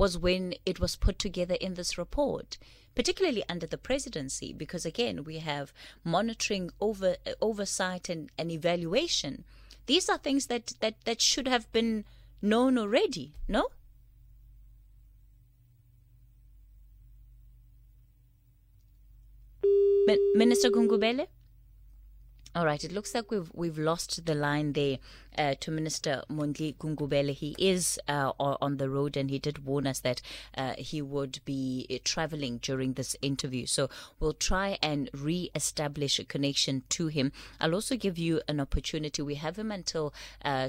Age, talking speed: 20-39, 140 wpm